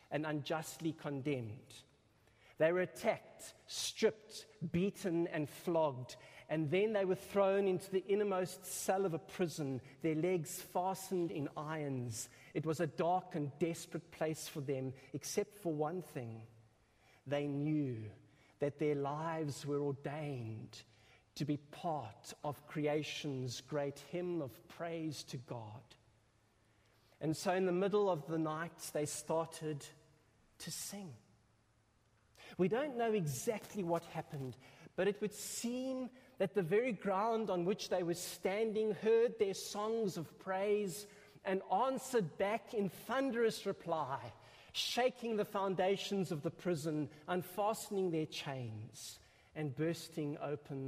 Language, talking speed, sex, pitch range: English, 130 wpm, male, 130-190 Hz